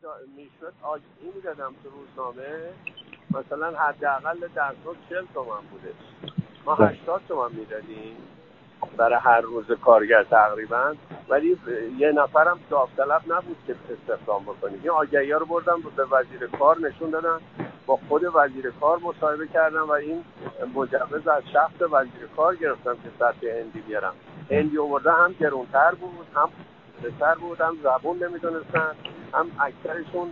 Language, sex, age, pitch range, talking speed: Persian, male, 50-69, 140-175 Hz, 135 wpm